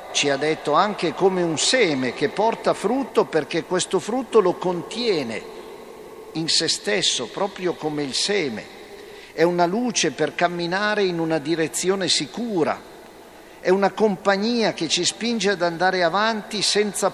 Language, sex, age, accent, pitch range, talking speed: Italian, male, 50-69, native, 145-200 Hz, 145 wpm